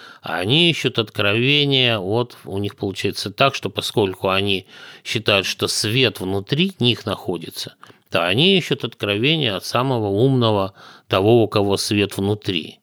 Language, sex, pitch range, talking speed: Russian, male, 100-135 Hz, 135 wpm